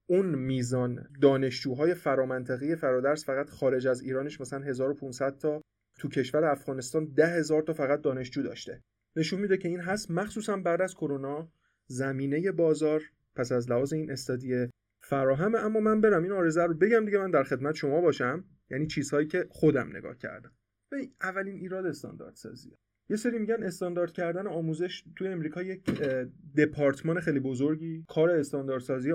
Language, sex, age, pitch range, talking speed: Persian, male, 30-49, 135-165 Hz, 155 wpm